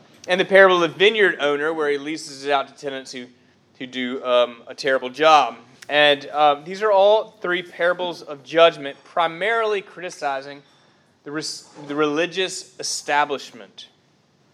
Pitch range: 135-170 Hz